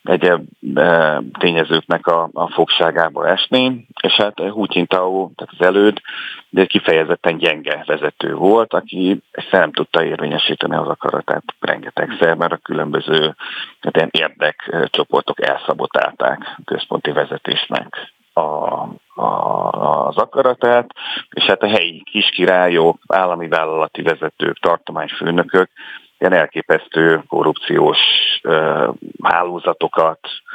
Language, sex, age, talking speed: Hungarian, male, 40-59, 95 wpm